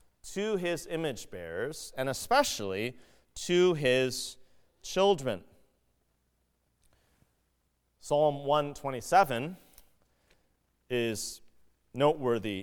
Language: English